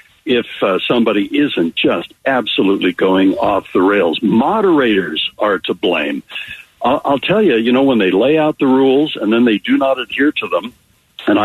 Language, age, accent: English, 60-79, American